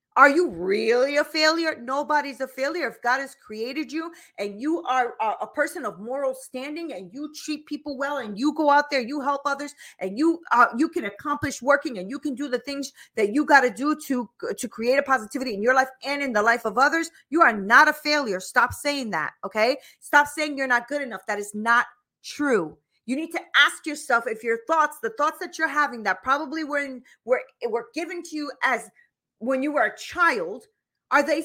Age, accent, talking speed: 40-59, American, 220 wpm